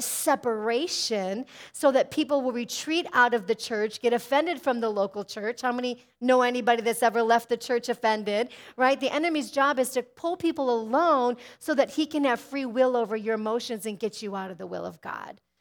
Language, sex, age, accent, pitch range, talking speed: English, female, 40-59, American, 220-270 Hz, 210 wpm